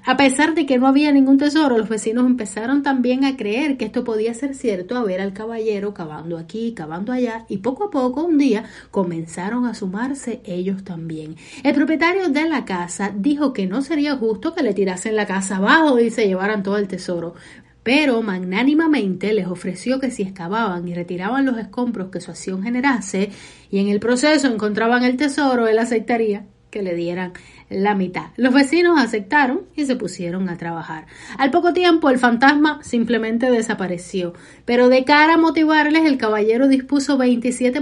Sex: female